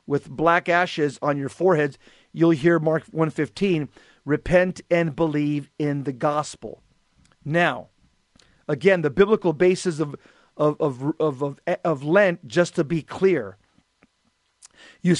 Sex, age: male, 40-59